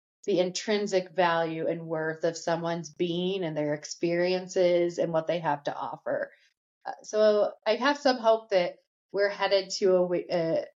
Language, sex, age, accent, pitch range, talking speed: English, female, 30-49, American, 165-205 Hz, 160 wpm